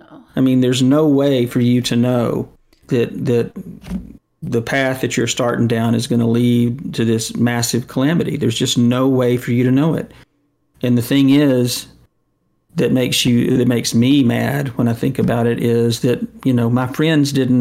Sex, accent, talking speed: male, American, 195 wpm